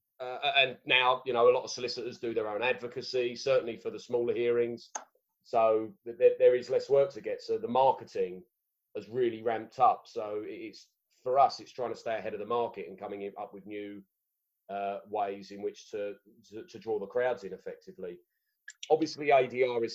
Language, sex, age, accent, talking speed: English, male, 30-49, British, 195 wpm